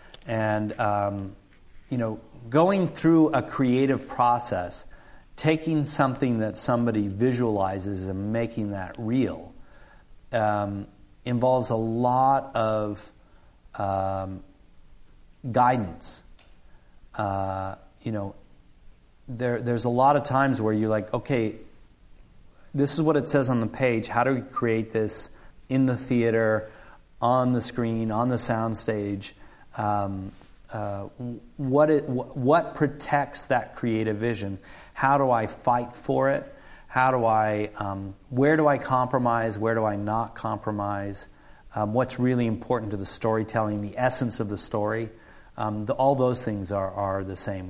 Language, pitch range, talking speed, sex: English, 100-125 Hz, 140 wpm, male